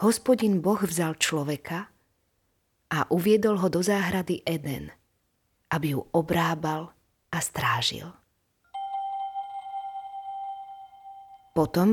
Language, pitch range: Slovak, 140-195 Hz